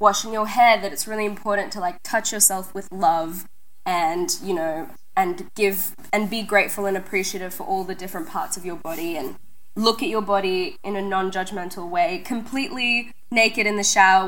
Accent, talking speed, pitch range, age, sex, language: Australian, 190 wpm, 190-220 Hz, 10-29, female, English